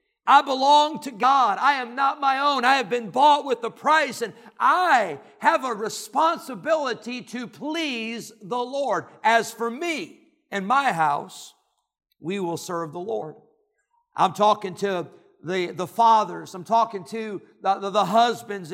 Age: 50-69